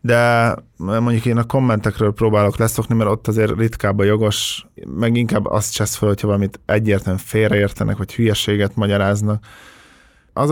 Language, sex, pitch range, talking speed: Hungarian, male, 100-120 Hz, 150 wpm